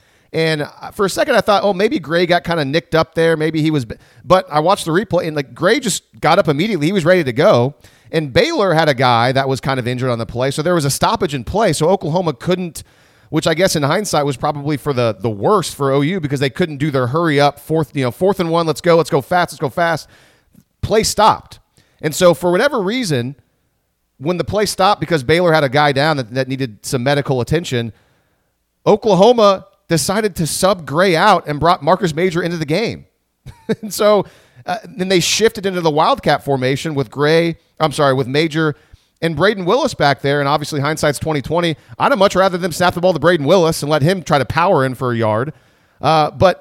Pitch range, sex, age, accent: 140-185 Hz, male, 30-49, American